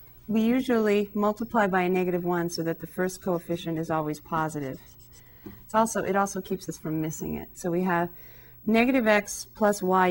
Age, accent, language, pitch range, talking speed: 40-59, American, English, 165-210 Hz, 185 wpm